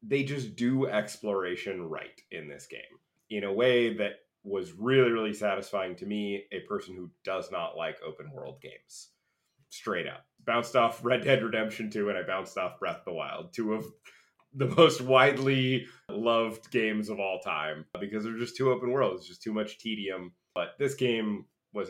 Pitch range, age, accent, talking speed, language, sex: 100-130 Hz, 30-49, American, 185 wpm, English, male